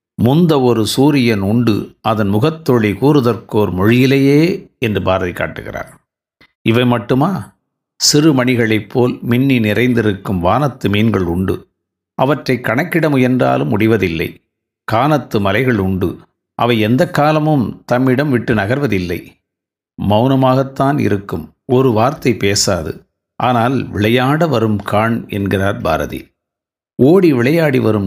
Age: 50-69